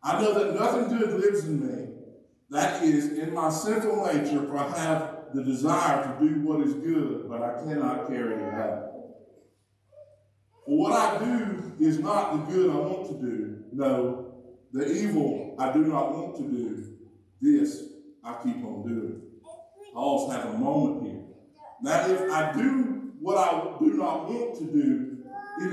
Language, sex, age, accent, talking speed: English, male, 50-69, American, 175 wpm